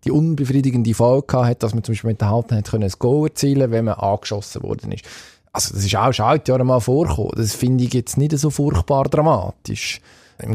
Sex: male